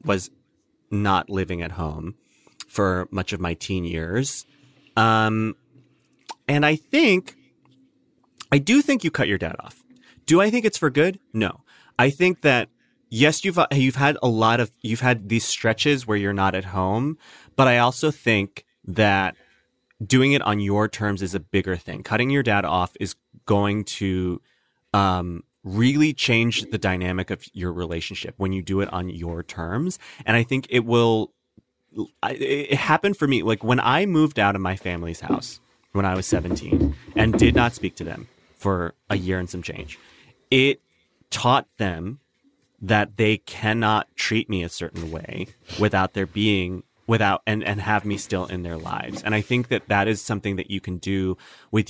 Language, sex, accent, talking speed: English, male, American, 180 wpm